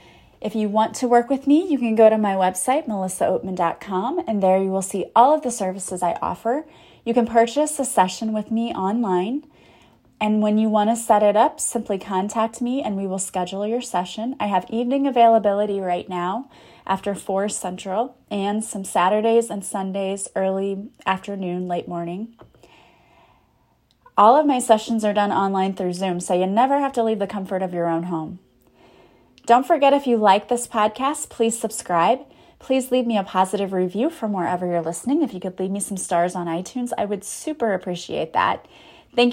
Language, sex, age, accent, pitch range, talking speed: English, female, 30-49, American, 190-235 Hz, 190 wpm